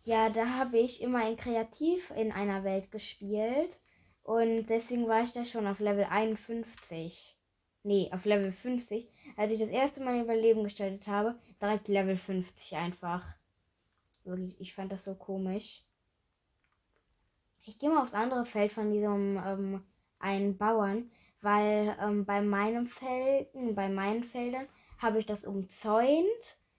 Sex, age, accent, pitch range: female, 20-39, German, 195-240 Hz